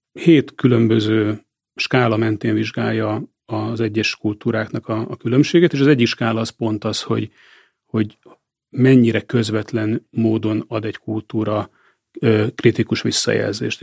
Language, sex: Hungarian, male